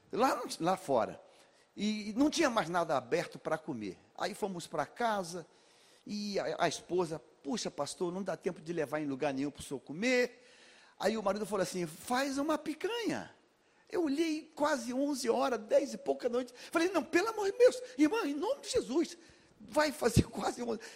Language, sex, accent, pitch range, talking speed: Portuguese, male, Brazilian, 195-310 Hz, 185 wpm